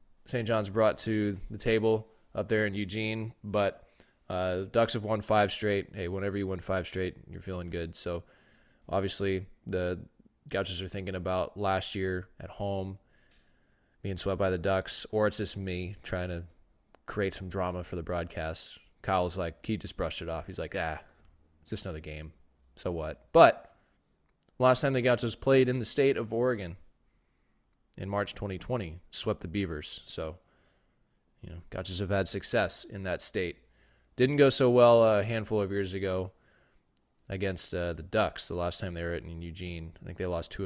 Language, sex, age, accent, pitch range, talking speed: English, male, 20-39, American, 90-105 Hz, 180 wpm